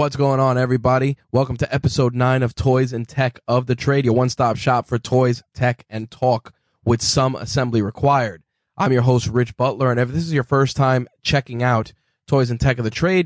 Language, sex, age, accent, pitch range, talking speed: English, male, 20-39, American, 115-135 Hz, 215 wpm